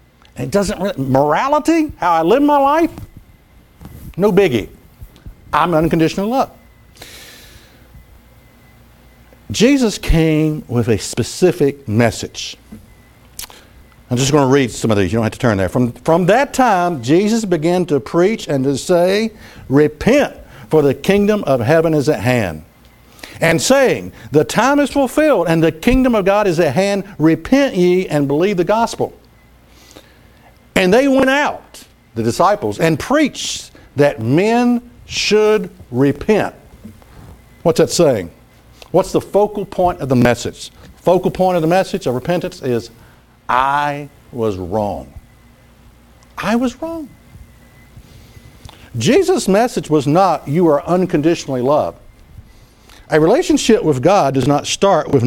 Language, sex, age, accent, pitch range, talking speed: English, male, 60-79, American, 125-200 Hz, 135 wpm